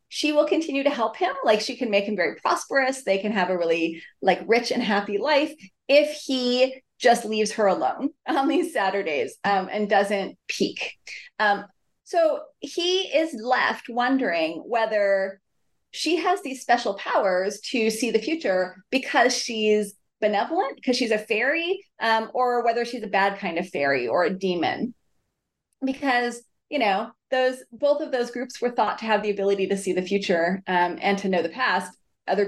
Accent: American